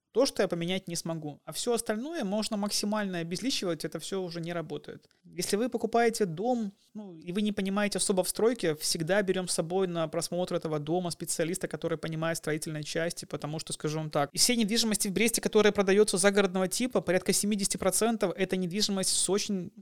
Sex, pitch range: male, 165-200 Hz